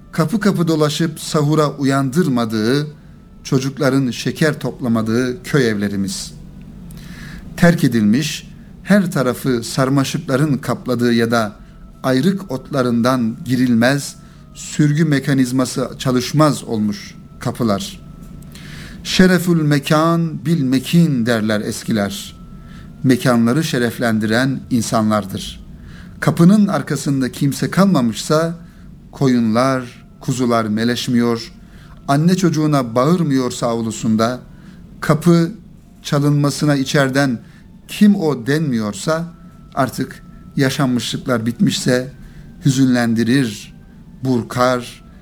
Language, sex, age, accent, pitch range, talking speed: Turkish, male, 60-79, native, 125-170 Hz, 75 wpm